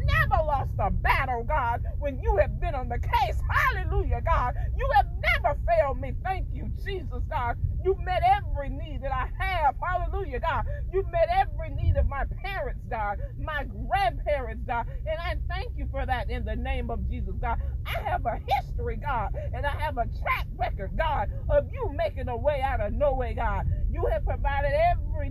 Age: 40-59